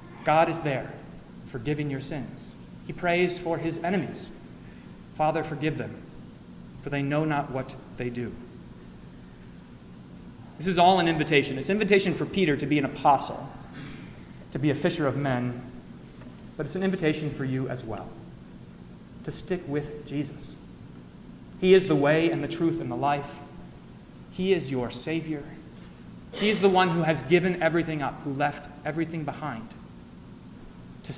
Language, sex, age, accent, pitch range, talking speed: English, male, 30-49, American, 130-165 Hz, 155 wpm